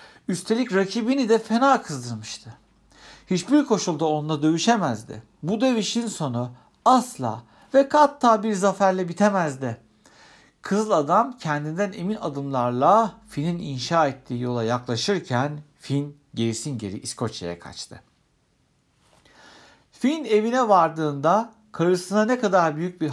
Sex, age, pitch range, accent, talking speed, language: male, 60-79, 125-205 Hz, native, 105 wpm, Turkish